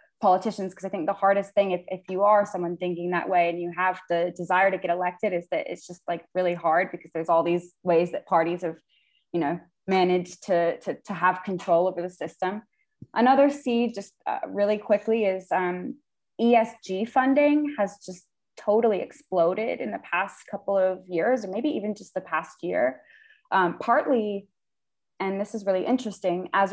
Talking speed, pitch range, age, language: 190 wpm, 180-210 Hz, 20-39, English